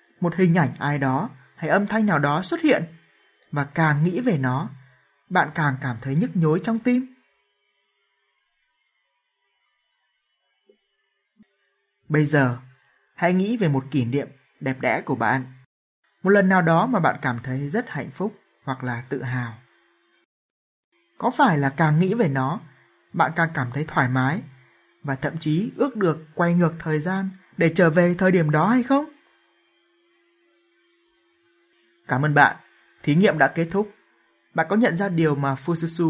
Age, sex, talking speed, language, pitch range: 20-39, male, 160 wpm, Vietnamese, 140-200 Hz